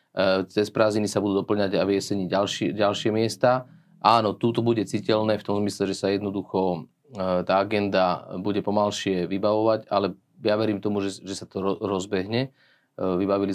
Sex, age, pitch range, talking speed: male, 30-49, 95-110 Hz, 160 wpm